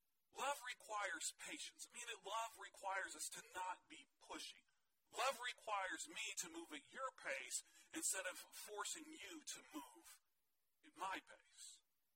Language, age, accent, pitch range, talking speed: English, 40-59, American, 215-315 Hz, 145 wpm